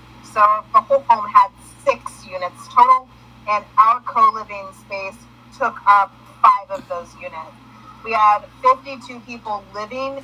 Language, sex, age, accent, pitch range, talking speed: English, female, 30-49, American, 205-260 Hz, 135 wpm